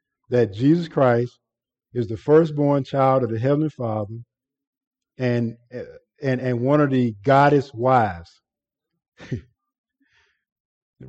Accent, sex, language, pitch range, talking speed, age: American, male, English, 125-155 Hz, 110 wpm, 50-69